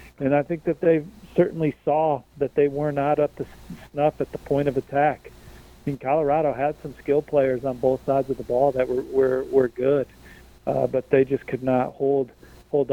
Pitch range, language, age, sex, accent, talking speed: 130-150 Hz, English, 40-59, male, American, 210 wpm